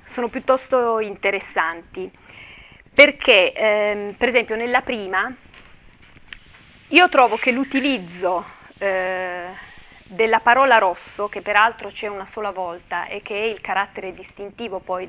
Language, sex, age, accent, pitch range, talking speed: Italian, female, 30-49, native, 190-245 Hz, 115 wpm